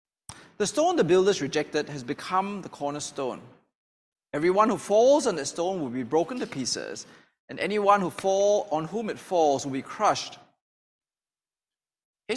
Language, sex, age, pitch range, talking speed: English, male, 20-39, 155-225 Hz, 155 wpm